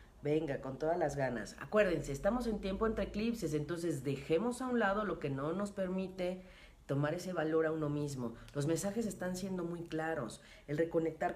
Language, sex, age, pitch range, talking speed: Spanish, female, 40-59, 135-165 Hz, 185 wpm